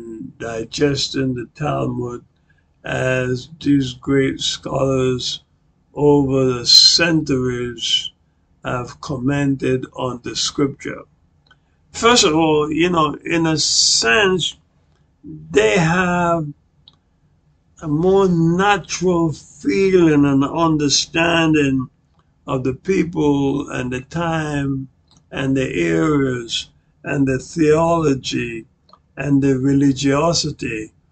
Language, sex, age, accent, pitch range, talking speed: English, male, 60-79, American, 130-160 Hz, 90 wpm